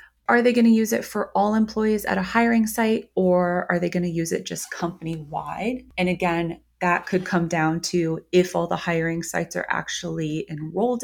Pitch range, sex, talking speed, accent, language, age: 165-205 Hz, female, 205 wpm, American, English, 30-49